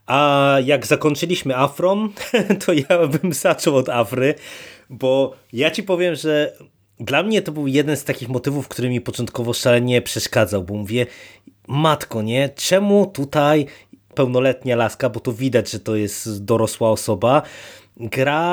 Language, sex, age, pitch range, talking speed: Polish, male, 20-39, 110-140 Hz, 145 wpm